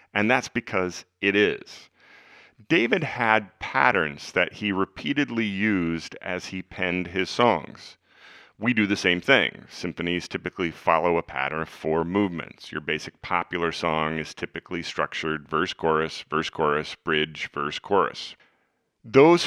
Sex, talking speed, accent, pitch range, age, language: male, 130 wpm, American, 85-115 Hz, 40-59, English